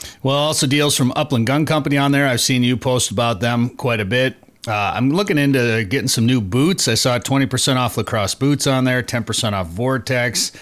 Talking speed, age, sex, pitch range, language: 210 wpm, 30-49, male, 115-140 Hz, English